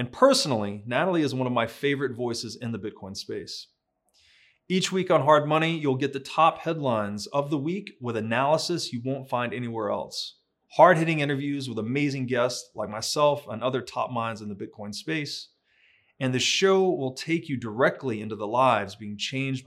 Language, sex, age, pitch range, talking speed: English, male, 30-49, 115-150 Hz, 185 wpm